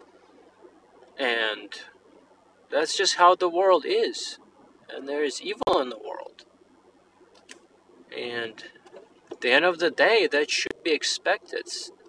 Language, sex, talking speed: English, male, 125 wpm